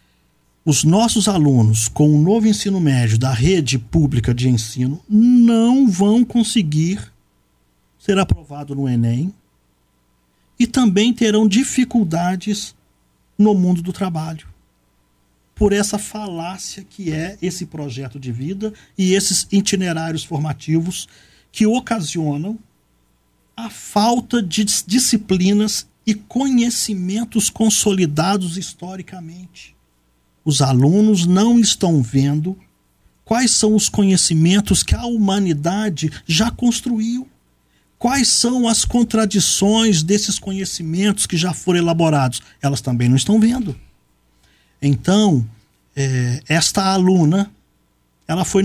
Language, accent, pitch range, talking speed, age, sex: Portuguese, Brazilian, 130-210 Hz, 105 wpm, 50-69, male